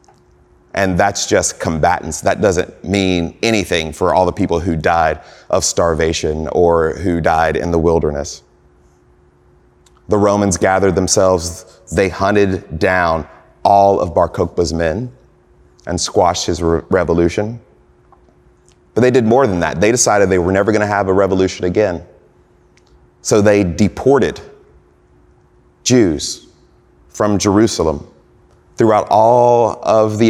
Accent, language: American, English